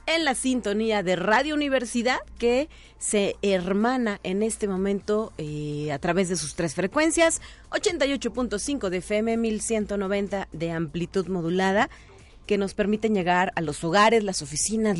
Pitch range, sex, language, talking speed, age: 170-230 Hz, female, Spanish, 140 wpm, 40-59